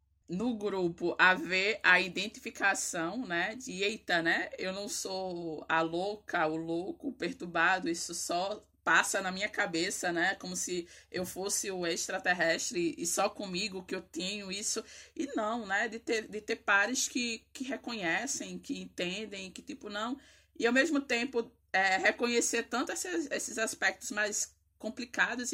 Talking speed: 155 wpm